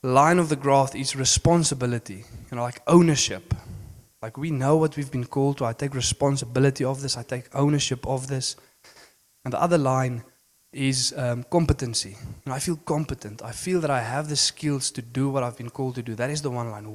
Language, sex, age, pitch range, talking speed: English, male, 20-39, 120-145 Hz, 205 wpm